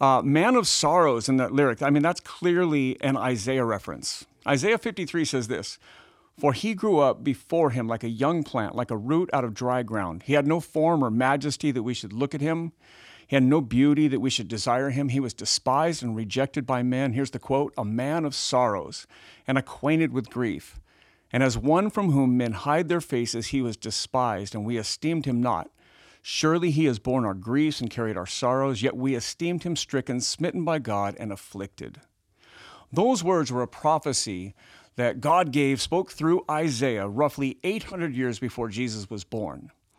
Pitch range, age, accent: 120-155 Hz, 50-69, American